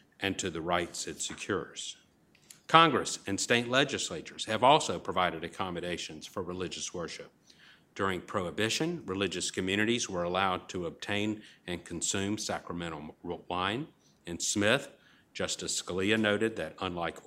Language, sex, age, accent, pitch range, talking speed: English, male, 50-69, American, 95-120 Hz, 125 wpm